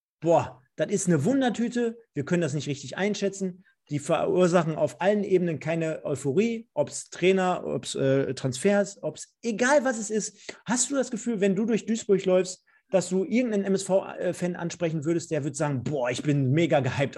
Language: German